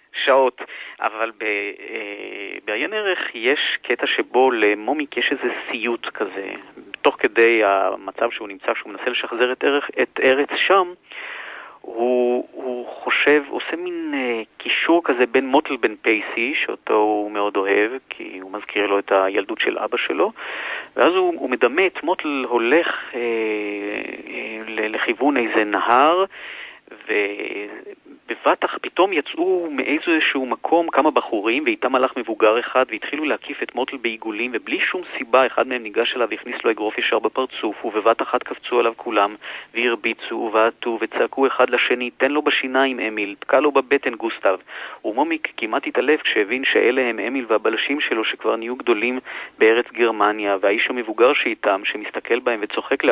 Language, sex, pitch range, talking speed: Hebrew, male, 110-185 Hz, 145 wpm